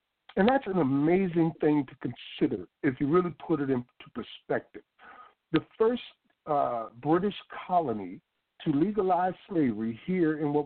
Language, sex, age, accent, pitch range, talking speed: English, male, 60-79, American, 145-190 Hz, 140 wpm